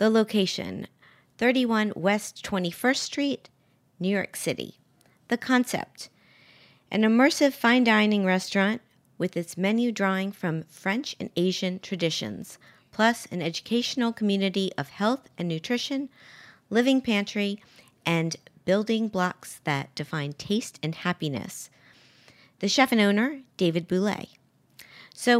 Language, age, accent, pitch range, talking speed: English, 40-59, American, 160-220 Hz, 120 wpm